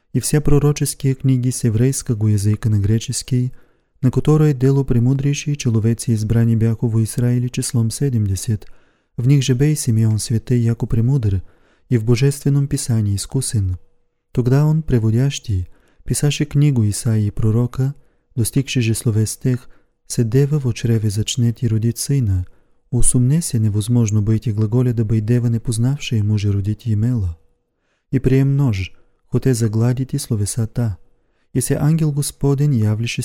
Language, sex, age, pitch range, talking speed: English, male, 30-49, 110-135 Hz, 140 wpm